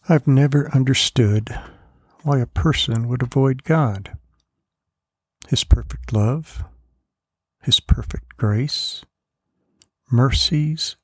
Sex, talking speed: male, 85 wpm